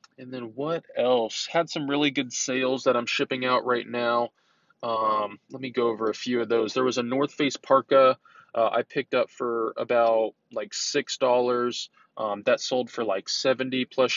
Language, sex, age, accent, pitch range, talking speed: English, male, 20-39, American, 120-140 Hz, 190 wpm